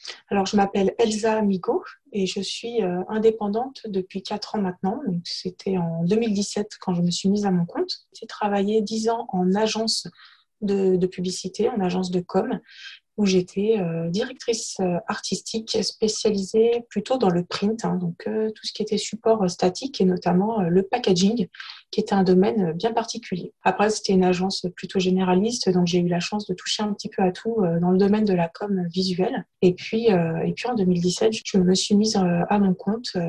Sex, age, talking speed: female, 20-39, 190 wpm